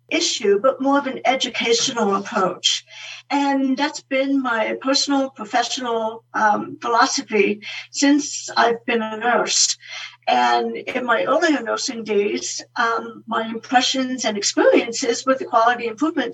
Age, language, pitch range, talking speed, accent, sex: 60-79, English, 215-265 Hz, 130 wpm, American, female